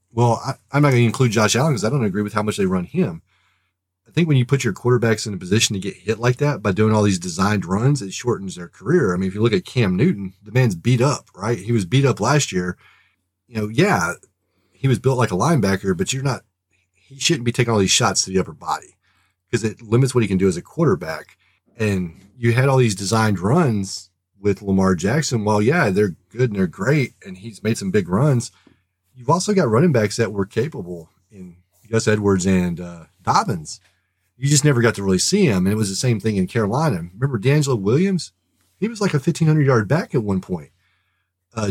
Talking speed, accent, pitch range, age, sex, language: 230 wpm, American, 95-130 Hz, 30-49, male, English